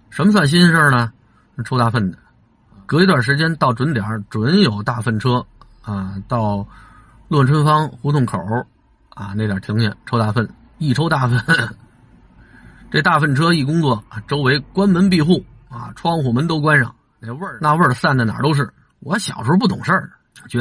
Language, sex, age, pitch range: Chinese, male, 50-69, 110-140 Hz